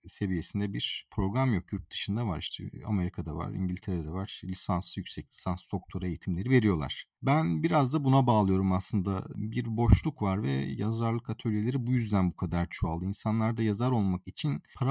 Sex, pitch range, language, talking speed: male, 95-125 Hz, Turkish, 165 wpm